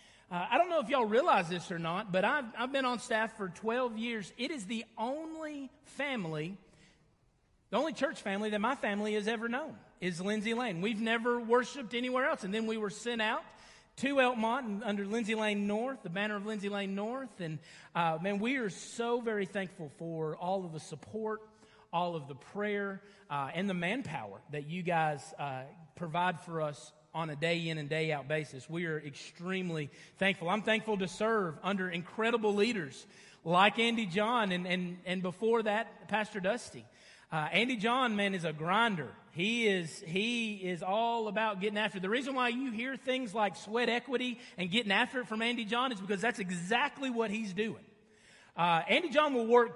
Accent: American